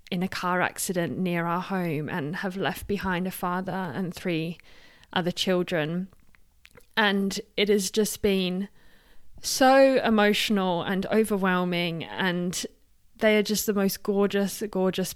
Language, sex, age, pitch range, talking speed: English, female, 20-39, 180-210 Hz, 135 wpm